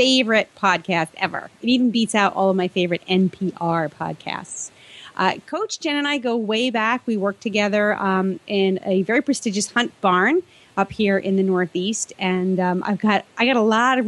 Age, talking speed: 30-49, 190 wpm